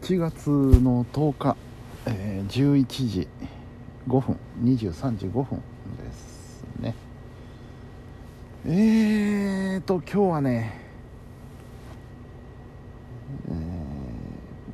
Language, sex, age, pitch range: Japanese, male, 50-69, 110-125 Hz